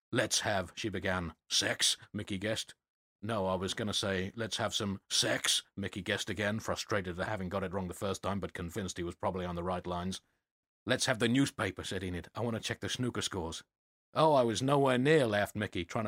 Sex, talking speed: male, 220 wpm